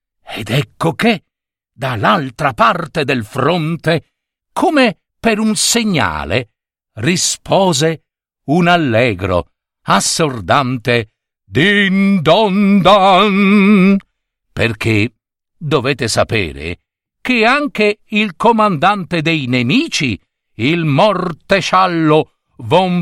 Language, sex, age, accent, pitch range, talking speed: Italian, male, 60-79, native, 150-210 Hz, 75 wpm